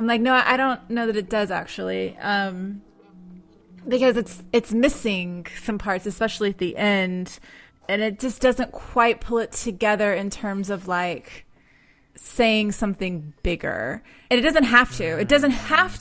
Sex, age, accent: female, 20-39, American